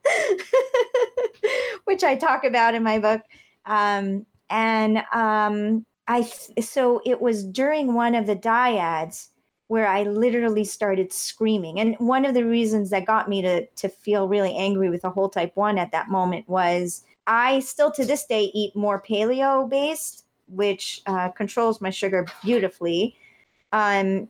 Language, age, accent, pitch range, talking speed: English, 30-49, American, 200-275 Hz, 150 wpm